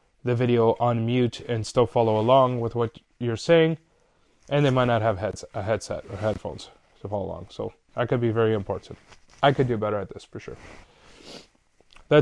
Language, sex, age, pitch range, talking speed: English, male, 20-39, 115-145 Hz, 190 wpm